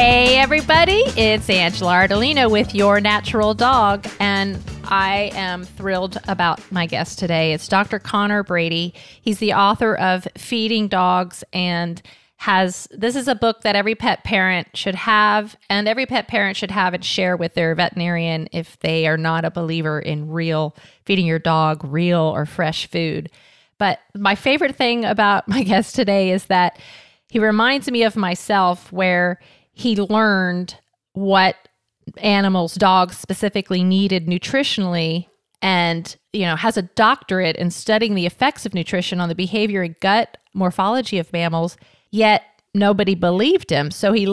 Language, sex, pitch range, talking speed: English, female, 175-210 Hz, 155 wpm